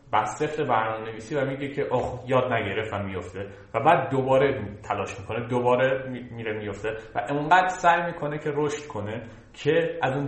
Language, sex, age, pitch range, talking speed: Persian, male, 30-49, 100-130 Hz, 170 wpm